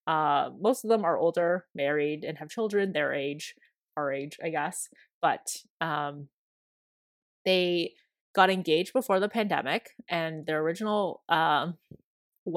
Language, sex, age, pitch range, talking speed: English, female, 20-39, 150-185 Hz, 140 wpm